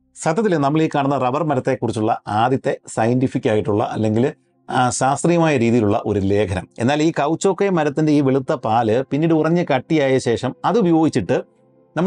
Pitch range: 110-150 Hz